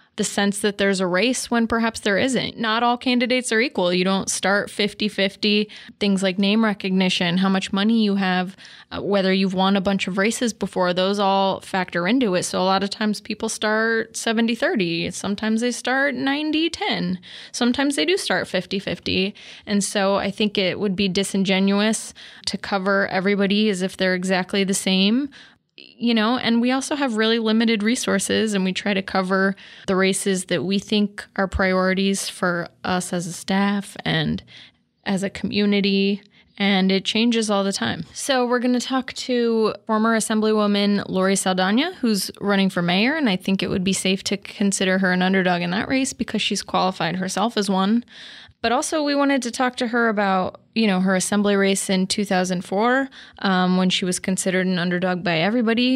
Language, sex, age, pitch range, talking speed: English, female, 20-39, 190-225 Hz, 185 wpm